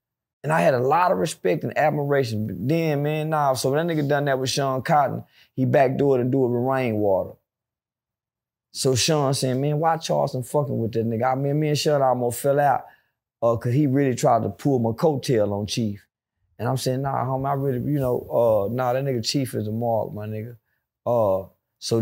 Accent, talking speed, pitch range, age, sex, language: American, 215 wpm, 105-130 Hz, 20-39, male, English